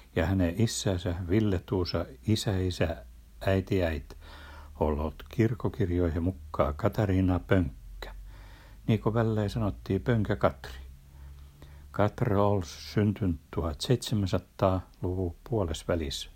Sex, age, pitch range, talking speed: male, 60-79, 80-105 Hz, 85 wpm